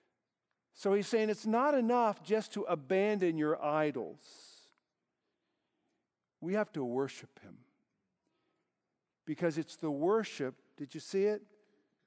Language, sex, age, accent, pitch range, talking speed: English, male, 50-69, American, 150-220 Hz, 120 wpm